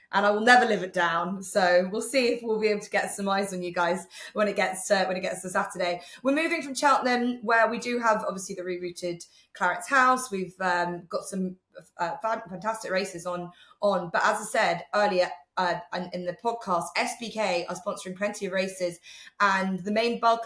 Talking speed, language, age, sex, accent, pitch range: 210 wpm, English, 20-39, female, British, 180-205 Hz